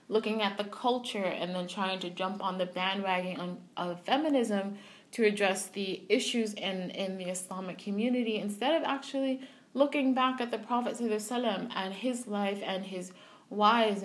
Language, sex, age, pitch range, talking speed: English, female, 20-39, 190-230 Hz, 160 wpm